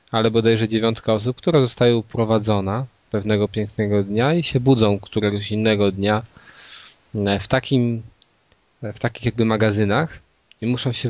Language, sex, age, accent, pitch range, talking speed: Polish, male, 20-39, native, 100-120 Hz, 135 wpm